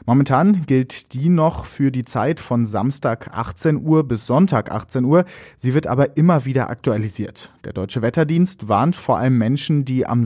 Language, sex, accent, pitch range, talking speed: German, male, German, 115-145 Hz, 175 wpm